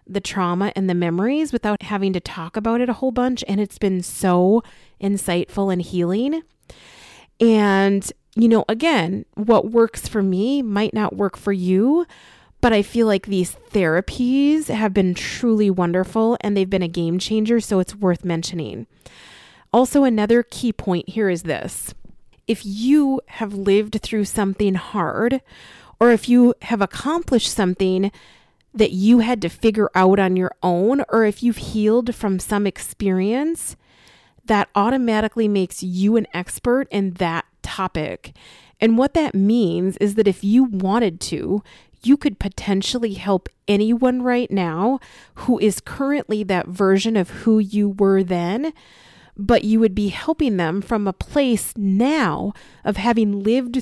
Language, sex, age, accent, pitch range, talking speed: English, female, 30-49, American, 195-235 Hz, 155 wpm